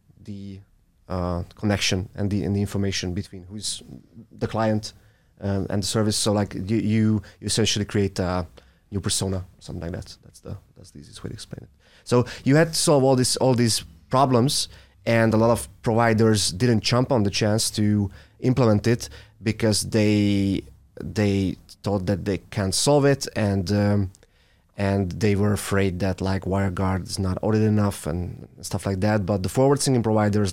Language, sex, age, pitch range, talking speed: English, male, 30-49, 95-115 Hz, 175 wpm